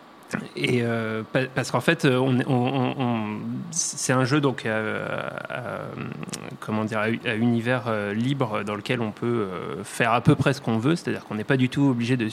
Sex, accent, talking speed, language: male, French, 180 wpm, French